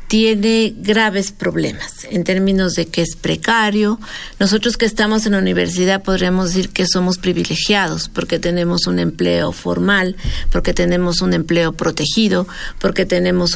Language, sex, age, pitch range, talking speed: Spanish, female, 50-69, 180-225 Hz, 140 wpm